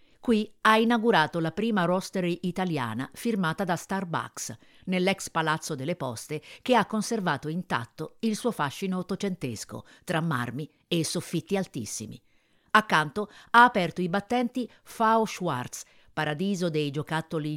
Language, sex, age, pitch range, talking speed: Italian, female, 50-69, 145-195 Hz, 125 wpm